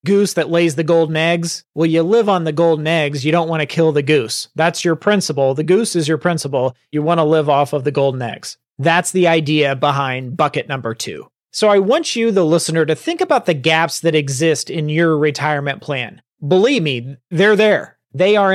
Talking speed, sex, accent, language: 215 wpm, male, American, English